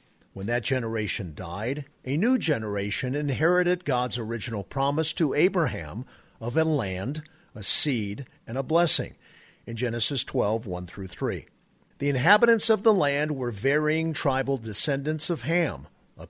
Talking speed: 140 wpm